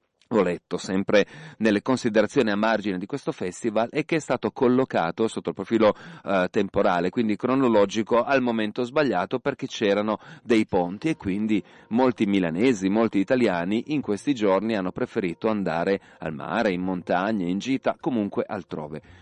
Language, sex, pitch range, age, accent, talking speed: Italian, male, 95-115 Hz, 40-59, native, 155 wpm